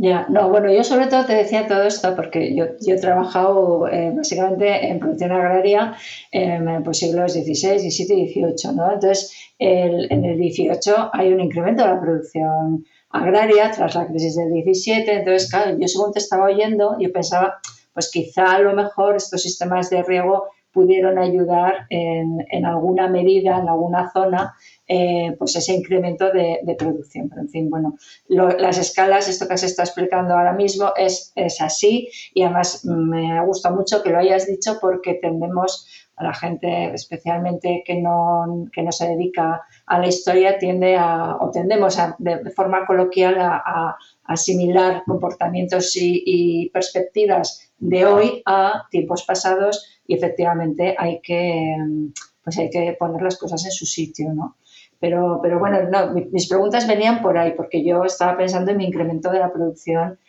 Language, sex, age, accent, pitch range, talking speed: English, female, 40-59, Spanish, 170-190 Hz, 170 wpm